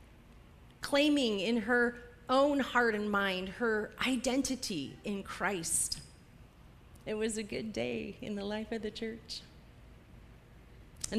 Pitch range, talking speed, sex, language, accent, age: 205-255 Hz, 125 wpm, female, English, American, 30-49